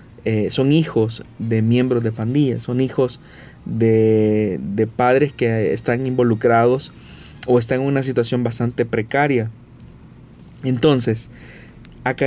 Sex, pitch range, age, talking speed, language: male, 115-130 Hz, 30-49, 115 wpm, Spanish